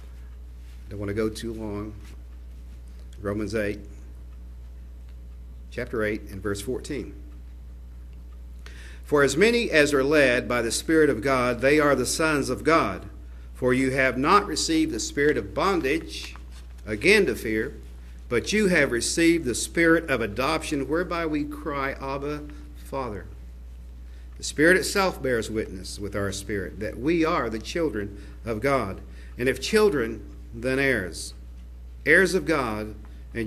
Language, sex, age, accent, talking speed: English, male, 50-69, American, 140 wpm